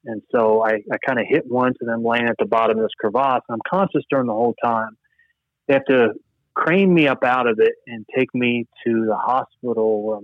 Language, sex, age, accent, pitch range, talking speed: English, male, 30-49, American, 110-135 Hz, 225 wpm